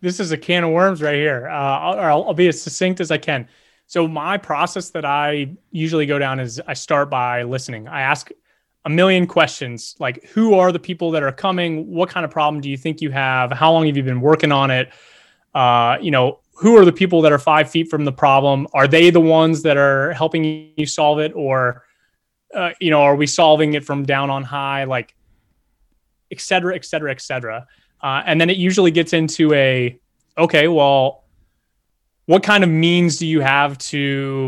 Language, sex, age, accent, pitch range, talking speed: English, male, 20-39, American, 135-165 Hz, 210 wpm